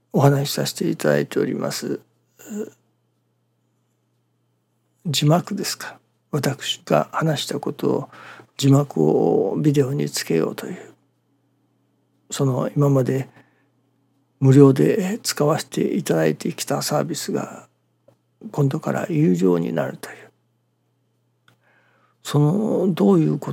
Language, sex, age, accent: Japanese, male, 60-79, native